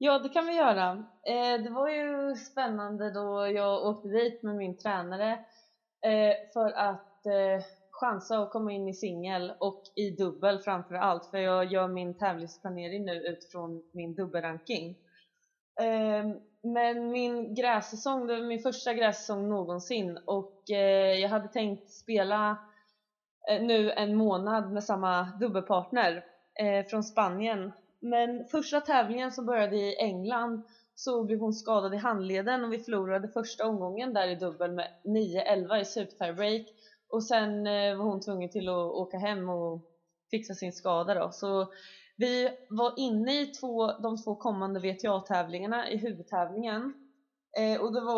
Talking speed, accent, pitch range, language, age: 140 wpm, native, 190-230 Hz, Swedish, 20-39